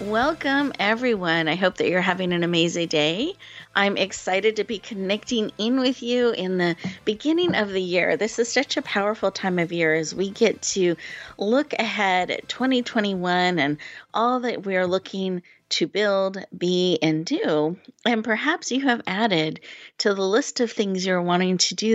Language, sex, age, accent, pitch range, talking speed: English, female, 30-49, American, 175-225 Hz, 175 wpm